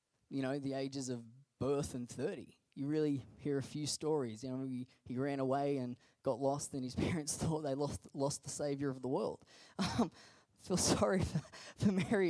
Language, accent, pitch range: English, Australian, 155-245 Hz